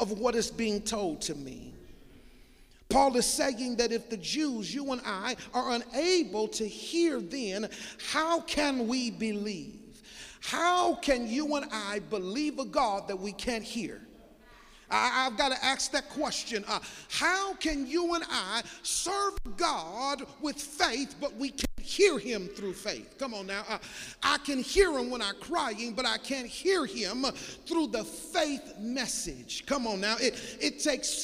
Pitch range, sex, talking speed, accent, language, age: 230-295 Hz, male, 170 wpm, American, English, 40-59